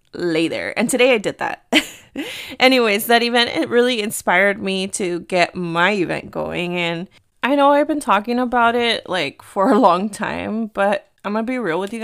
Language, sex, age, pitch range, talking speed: English, female, 20-39, 180-230 Hz, 190 wpm